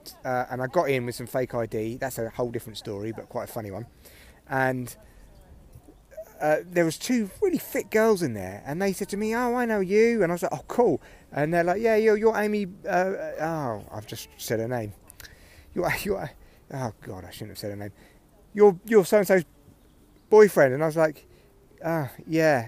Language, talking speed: English, 215 wpm